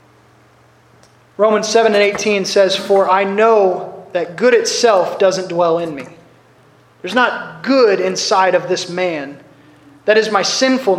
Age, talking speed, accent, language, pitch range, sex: 20-39, 140 wpm, American, English, 190-255 Hz, male